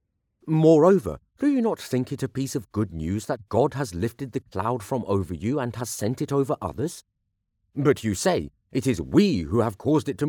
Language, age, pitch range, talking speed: English, 40-59, 105-165 Hz, 215 wpm